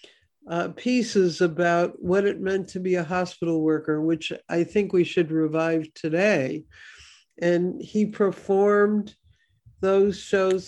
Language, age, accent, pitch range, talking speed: English, 60-79, American, 165-200 Hz, 130 wpm